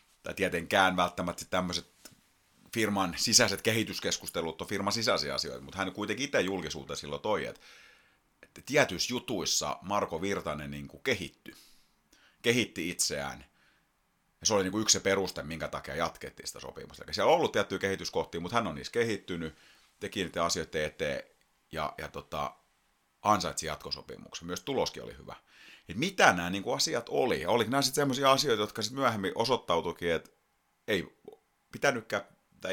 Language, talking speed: Finnish, 150 wpm